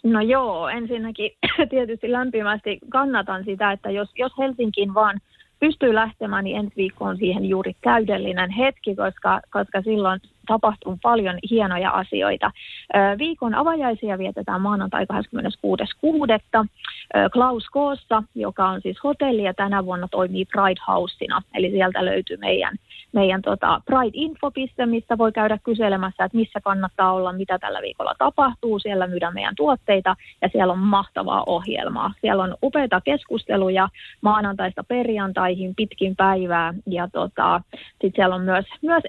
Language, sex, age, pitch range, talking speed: Finnish, female, 30-49, 190-240 Hz, 135 wpm